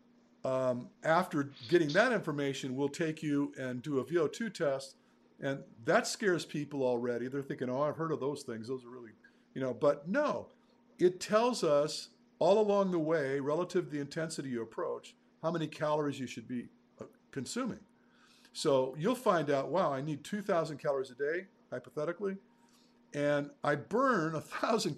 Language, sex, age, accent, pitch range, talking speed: English, male, 50-69, American, 130-180 Hz, 165 wpm